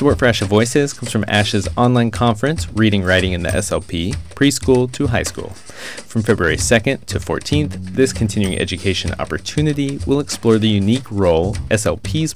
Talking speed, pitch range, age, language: 165 wpm, 95-125 Hz, 30-49, English